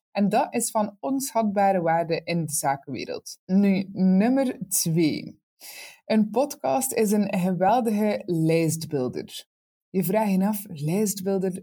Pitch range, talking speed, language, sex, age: 175-230 Hz, 120 wpm, Dutch, female, 20-39